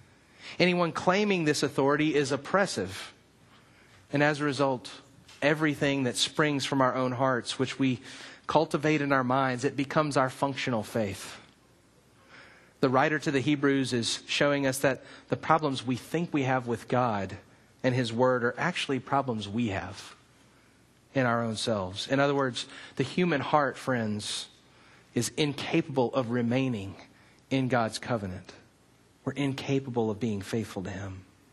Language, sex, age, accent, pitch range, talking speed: English, male, 30-49, American, 120-150 Hz, 150 wpm